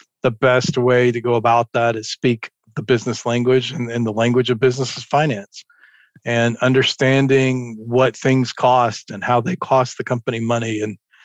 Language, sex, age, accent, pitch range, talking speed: English, male, 40-59, American, 120-130 Hz, 175 wpm